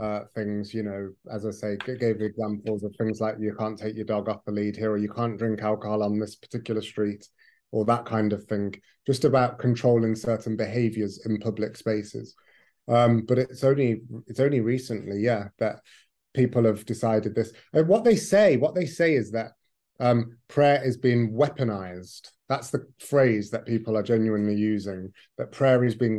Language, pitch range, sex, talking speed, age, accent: English, 105-125 Hz, male, 190 wpm, 30-49, British